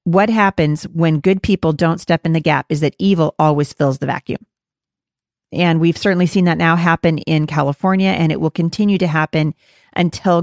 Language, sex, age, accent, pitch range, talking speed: English, female, 40-59, American, 155-195 Hz, 190 wpm